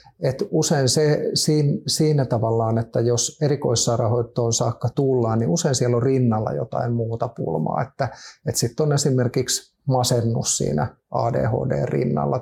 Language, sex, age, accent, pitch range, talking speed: Finnish, male, 50-69, native, 120-135 Hz, 125 wpm